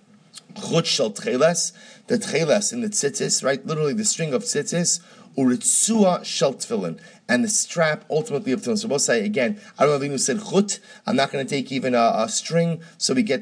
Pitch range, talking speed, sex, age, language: 150-220 Hz, 200 wpm, male, 30-49, English